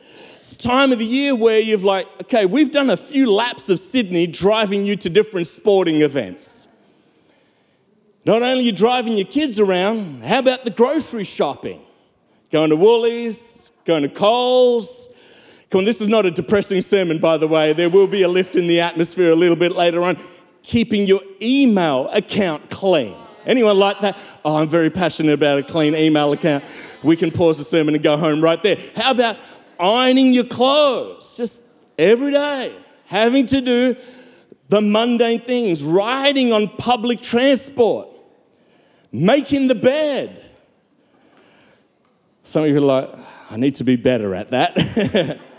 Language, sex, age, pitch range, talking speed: English, male, 40-59, 175-250 Hz, 165 wpm